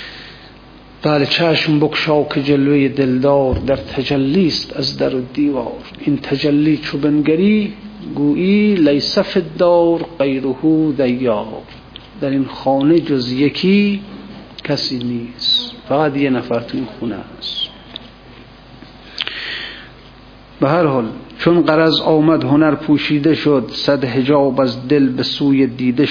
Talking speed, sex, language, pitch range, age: 110 wpm, male, Persian, 135-155 Hz, 50-69